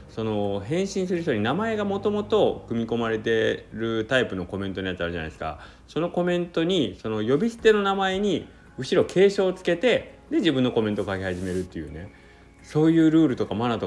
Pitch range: 90-135 Hz